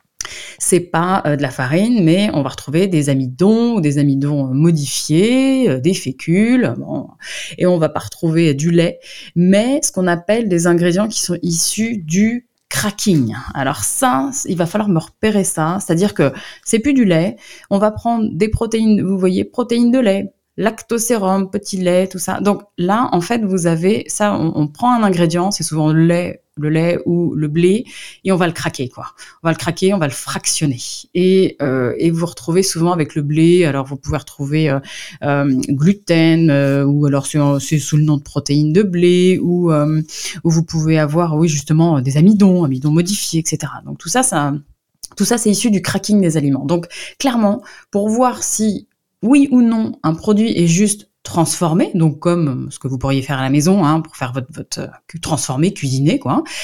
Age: 20-39